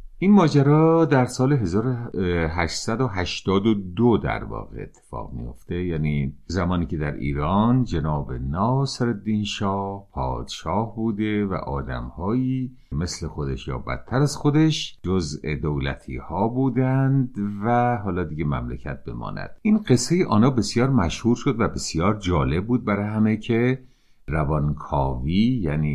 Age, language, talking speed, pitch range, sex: 50-69, Persian, 120 wpm, 75-120 Hz, male